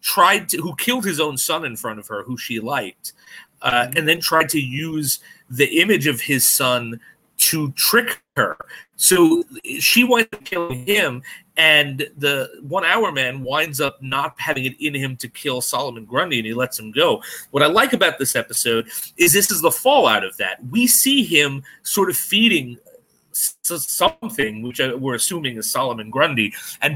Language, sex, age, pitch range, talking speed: English, male, 30-49, 130-180 Hz, 180 wpm